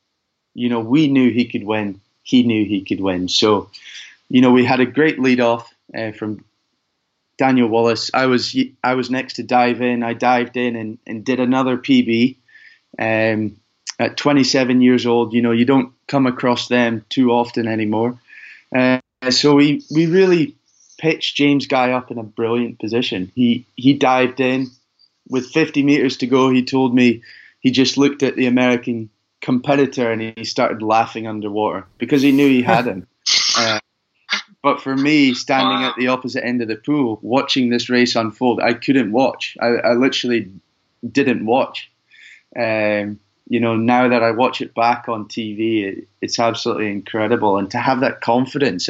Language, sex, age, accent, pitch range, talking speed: English, male, 20-39, British, 115-130 Hz, 175 wpm